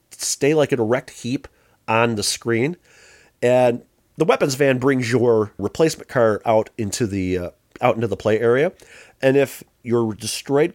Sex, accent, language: male, American, English